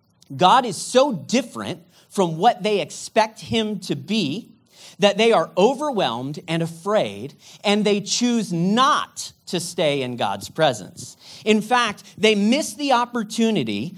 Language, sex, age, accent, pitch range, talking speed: English, male, 40-59, American, 155-220 Hz, 135 wpm